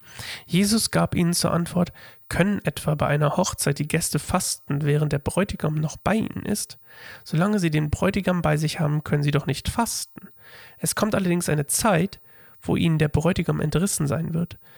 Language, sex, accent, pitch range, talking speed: German, male, German, 150-180 Hz, 180 wpm